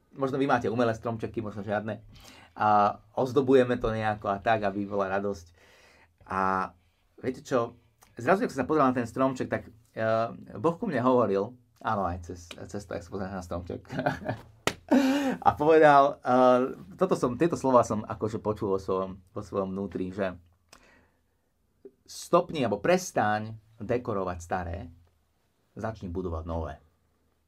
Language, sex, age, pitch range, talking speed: Slovak, male, 30-49, 95-130 Hz, 140 wpm